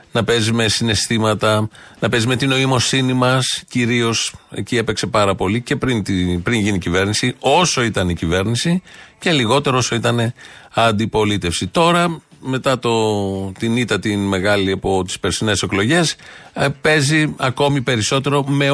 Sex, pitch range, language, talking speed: male, 105-130 Hz, Greek, 145 wpm